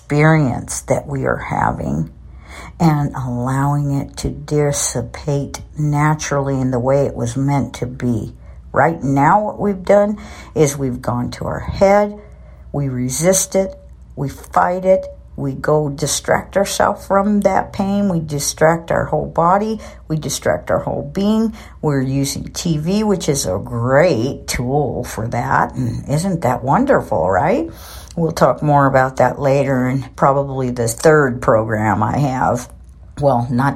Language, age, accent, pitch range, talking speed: English, 60-79, American, 120-160 Hz, 150 wpm